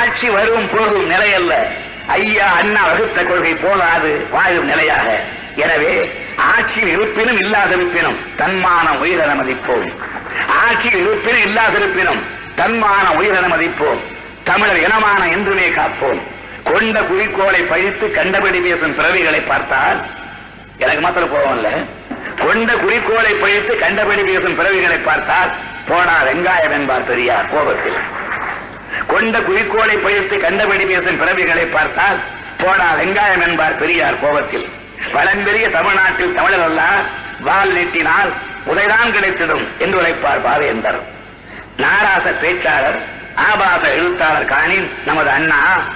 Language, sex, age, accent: Tamil, male, 60-79, native